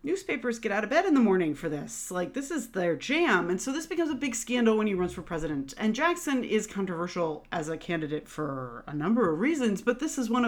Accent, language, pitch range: American, English, 170-235 Hz